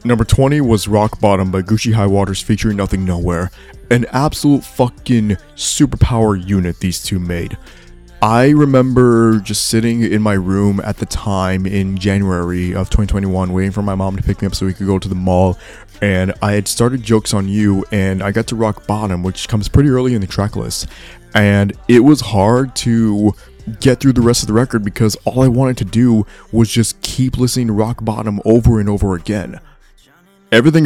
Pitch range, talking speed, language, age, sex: 95-110 Hz, 195 wpm, English, 20-39, male